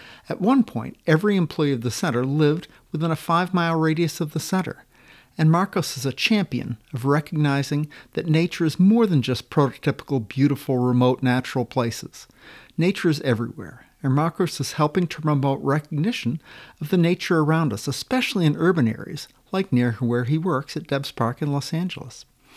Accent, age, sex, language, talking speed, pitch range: American, 50-69, male, English, 170 wpm, 125-170 Hz